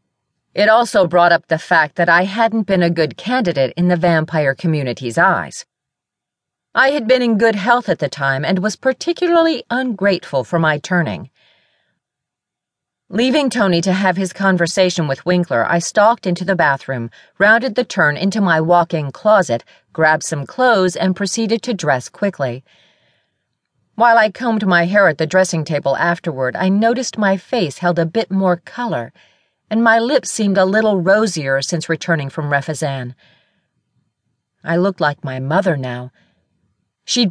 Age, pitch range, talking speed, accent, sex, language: 40-59, 150-205 Hz, 160 wpm, American, female, English